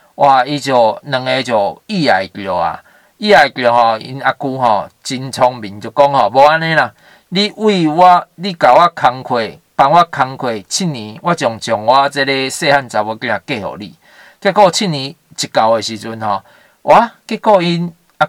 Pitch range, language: 125-175 Hz, Chinese